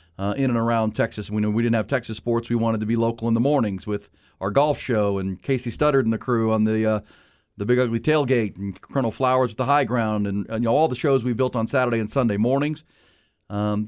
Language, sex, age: English, male, 40-59